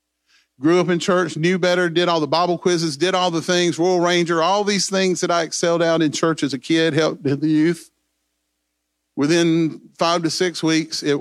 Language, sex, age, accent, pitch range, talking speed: English, male, 40-59, American, 125-170 Hz, 205 wpm